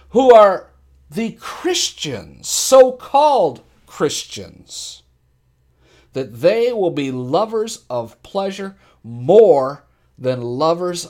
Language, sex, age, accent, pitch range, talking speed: English, male, 50-69, American, 140-235 Hz, 85 wpm